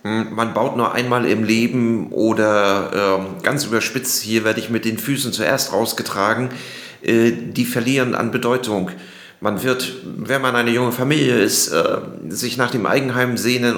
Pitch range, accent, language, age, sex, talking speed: 110-125 Hz, German, German, 40-59, male, 160 wpm